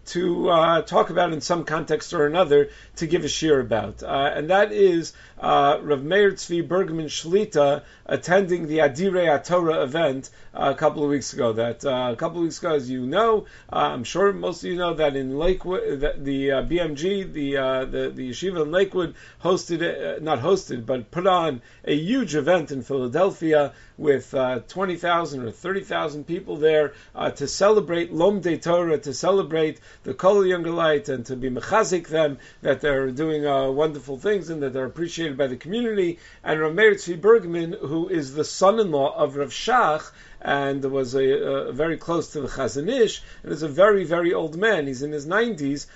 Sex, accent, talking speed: male, American, 195 wpm